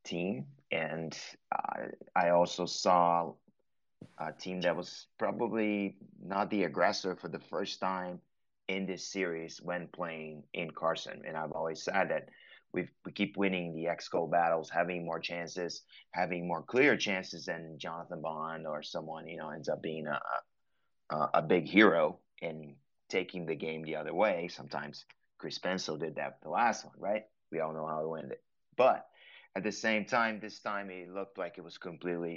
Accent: American